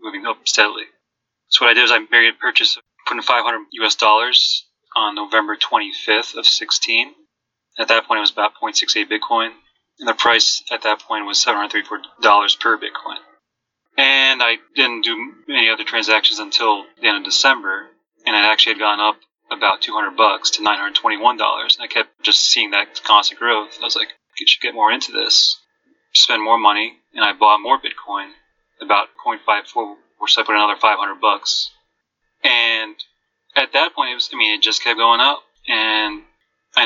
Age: 30-49